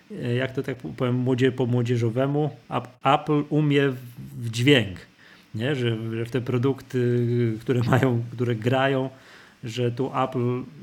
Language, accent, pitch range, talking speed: Polish, native, 125-155 Hz, 115 wpm